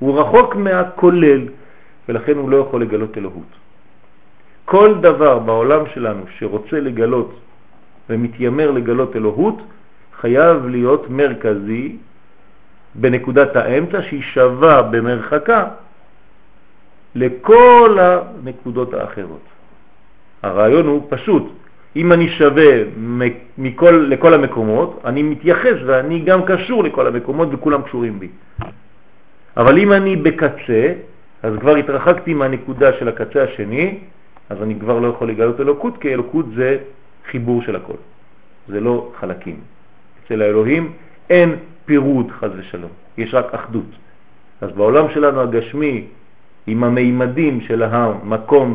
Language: French